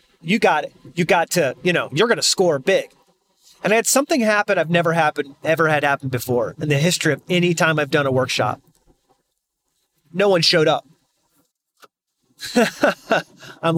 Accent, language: American, English